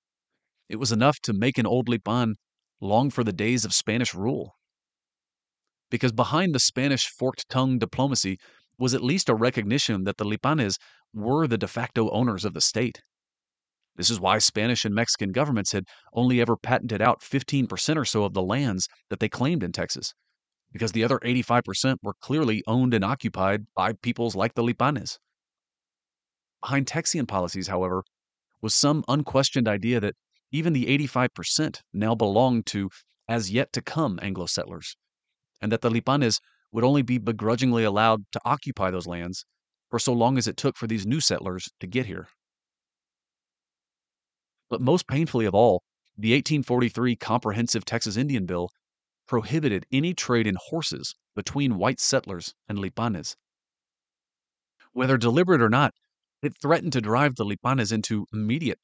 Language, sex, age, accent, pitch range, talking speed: English, male, 40-59, American, 105-130 Hz, 155 wpm